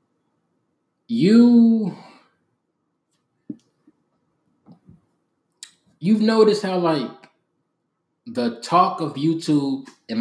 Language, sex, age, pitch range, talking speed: English, male, 20-39, 150-215 Hz, 60 wpm